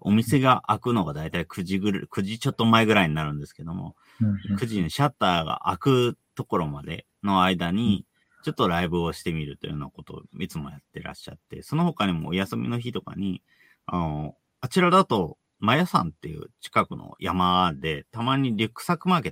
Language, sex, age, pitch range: Japanese, male, 40-59, 90-130 Hz